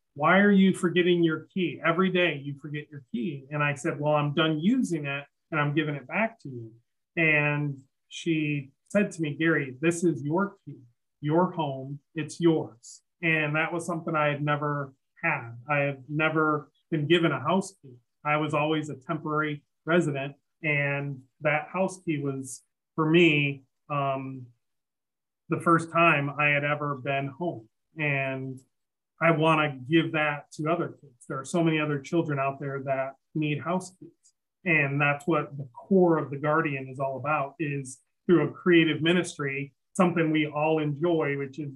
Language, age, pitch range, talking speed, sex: English, 30-49, 140-165 Hz, 175 wpm, male